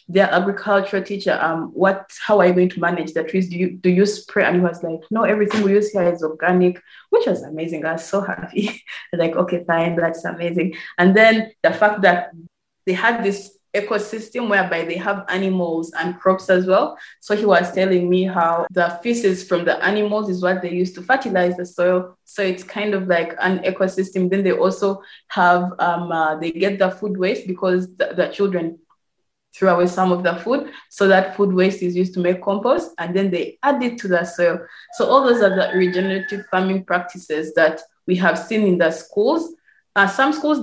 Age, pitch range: 20-39, 175-200 Hz